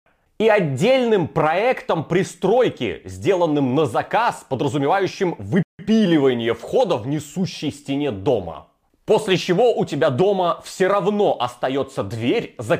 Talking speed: 115 wpm